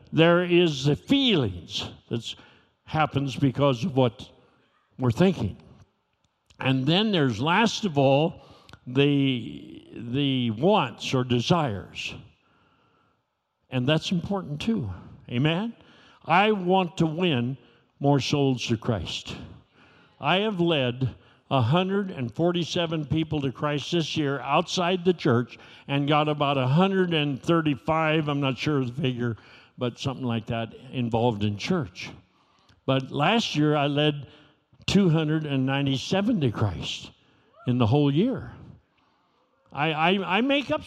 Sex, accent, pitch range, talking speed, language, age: male, American, 130-180 Hz, 120 wpm, English, 60-79